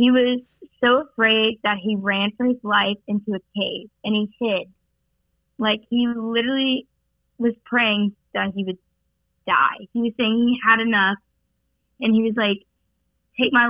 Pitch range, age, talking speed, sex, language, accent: 200-245 Hz, 20-39, 160 wpm, female, English, American